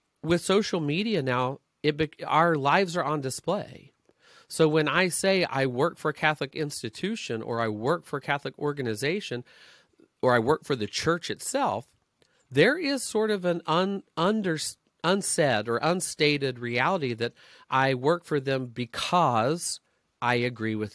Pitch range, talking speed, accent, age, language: 120-160 Hz, 145 wpm, American, 40-59, English